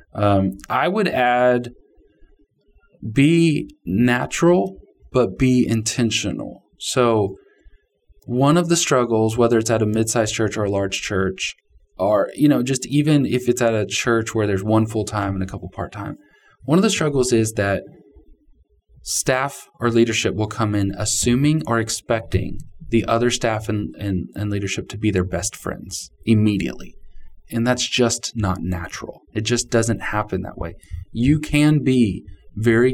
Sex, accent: male, American